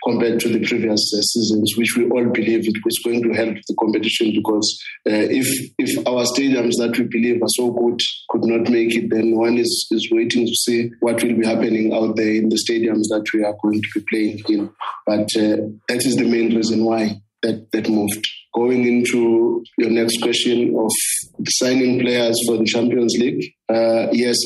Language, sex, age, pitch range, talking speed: English, male, 30-49, 110-120 Hz, 200 wpm